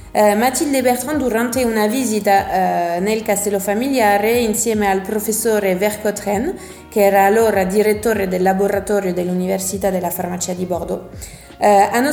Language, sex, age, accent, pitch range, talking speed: Italian, female, 20-39, native, 200-230 Hz, 120 wpm